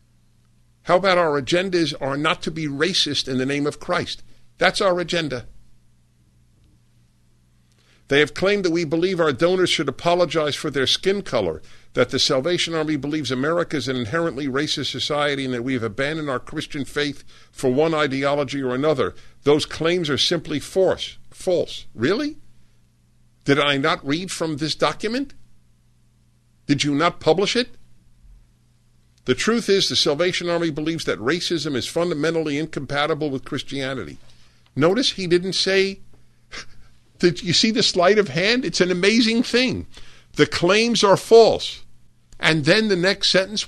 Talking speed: 155 wpm